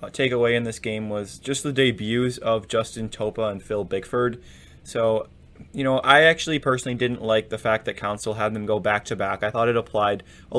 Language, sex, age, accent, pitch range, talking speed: English, male, 20-39, American, 105-130 Hz, 215 wpm